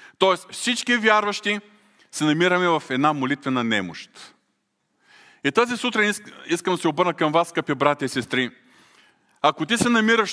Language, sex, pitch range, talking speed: Bulgarian, male, 140-185 Hz, 150 wpm